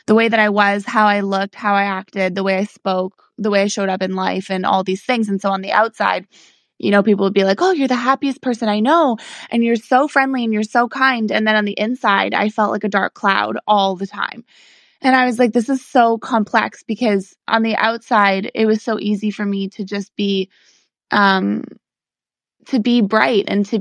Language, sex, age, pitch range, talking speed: English, female, 20-39, 200-225 Hz, 235 wpm